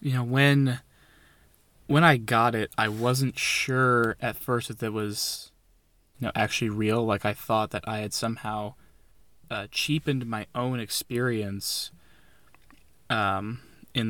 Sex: male